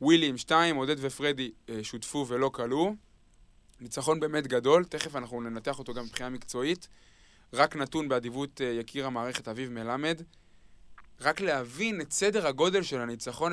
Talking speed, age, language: 135 wpm, 20-39, Hebrew